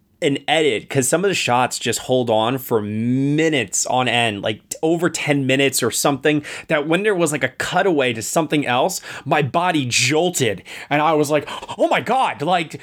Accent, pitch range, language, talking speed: American, 110-170 Hz, English, 190 wpm